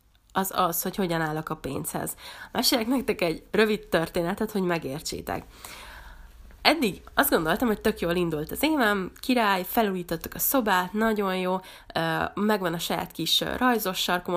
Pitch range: 170-220 Hz